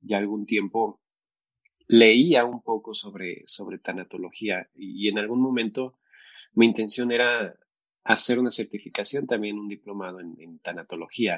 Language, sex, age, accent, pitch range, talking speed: Spanish, male, 30-49, Mexican, 100-125 Hz, 135 wpm